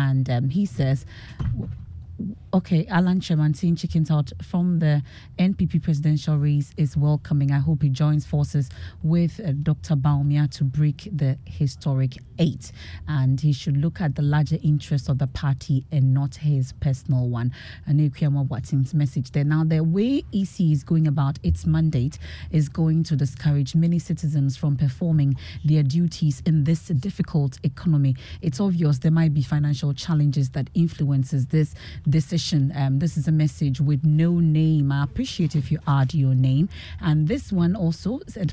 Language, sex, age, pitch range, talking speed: English, female, 30-49, 140-160 Hz, 160 wpm